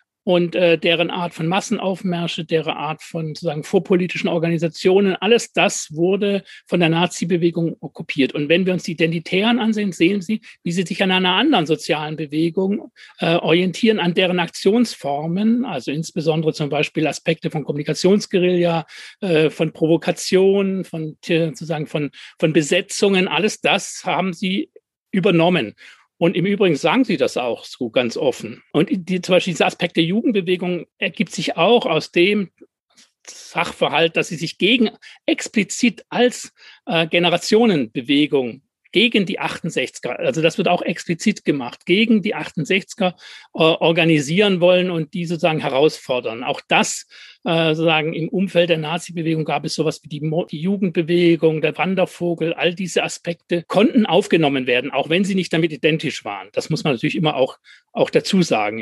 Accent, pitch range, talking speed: German, 160-195 Hz, 155 wpm